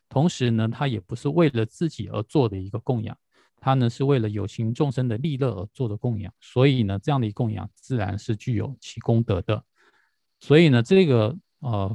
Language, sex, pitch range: Chinese, male, 105-130 Hz